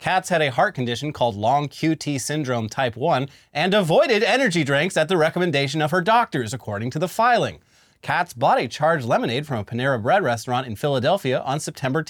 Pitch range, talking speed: 125-185 Hz, 200 wpm